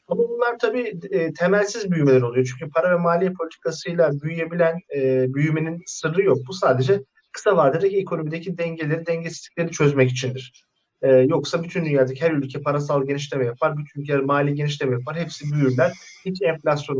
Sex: male